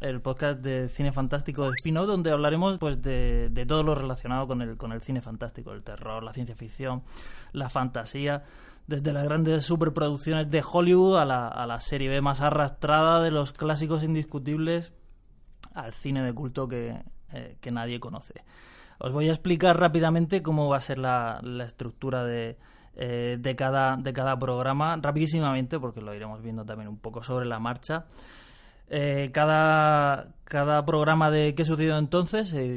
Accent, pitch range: Spanish, 125-155 Hz